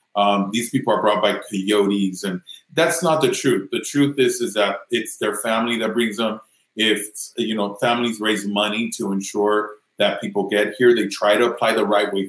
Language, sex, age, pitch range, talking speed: English, male, 30-49, 100-120 Hz, 205 wpm